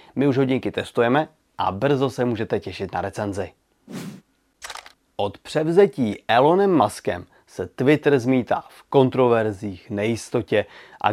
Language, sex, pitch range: Czech, male, 120-155 Hz